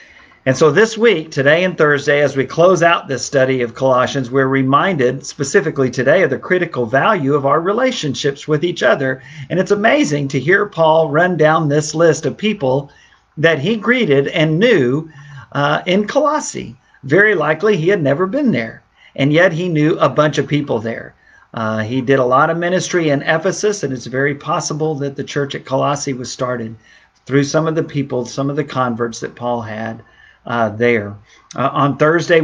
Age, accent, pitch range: 50-69, American, 120-155 Hz